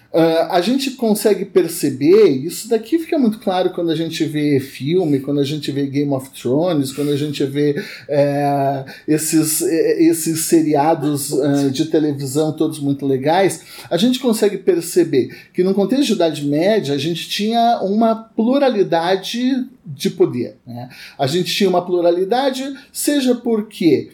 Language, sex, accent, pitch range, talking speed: Portuguese, male, Brazilian, 150-210 Hz, 145 wpm